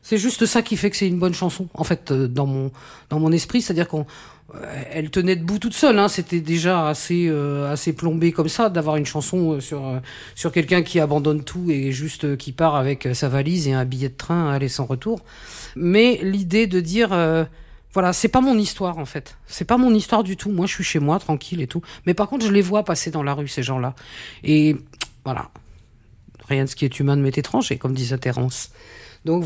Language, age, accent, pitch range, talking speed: French, 50-69, French, 140-190 Hz, 230 wpm